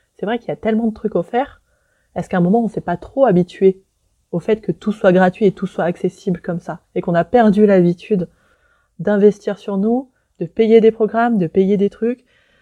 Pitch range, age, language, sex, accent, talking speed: 170-210 Hz, 20-39, French, female, French, 225 wpm